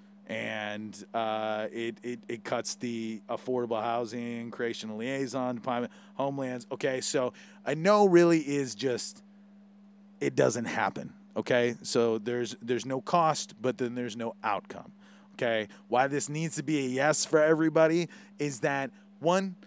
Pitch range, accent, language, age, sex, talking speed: 120-175 Hz, American, English, 30-49, male, 145 wpm